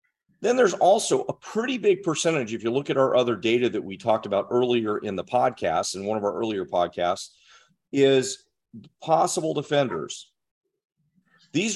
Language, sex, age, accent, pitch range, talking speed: English, male, 40-59, American, 125-175 Hz, 165 wpm